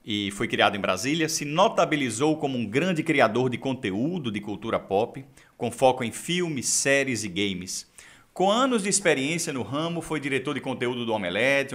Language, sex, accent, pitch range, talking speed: Portuguese, male, Brazilian, 120-160 Hz, 180 wpm